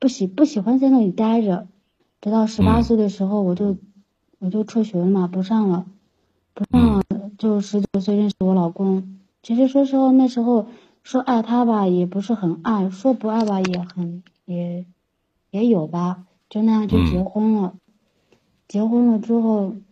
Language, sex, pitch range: Chinese, female, 185-230 Hz